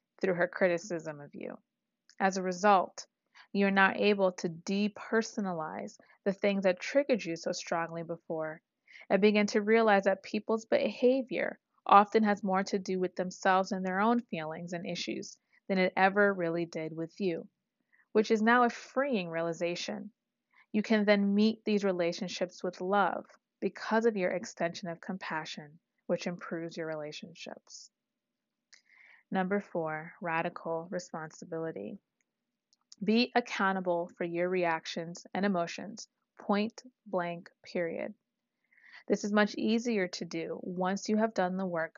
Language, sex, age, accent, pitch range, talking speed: English, female, 30-49, American, 175-215 Hz, 140 wpm